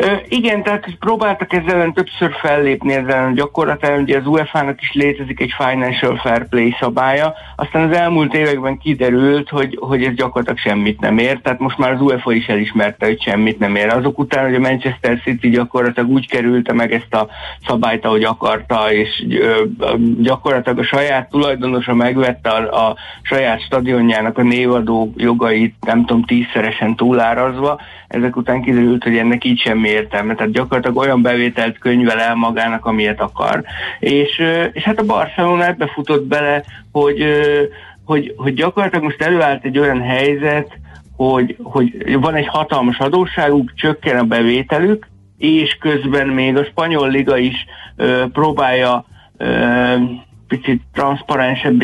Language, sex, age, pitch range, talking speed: Hungarian, male, 60-79, 120-145 Hz, 145 wpm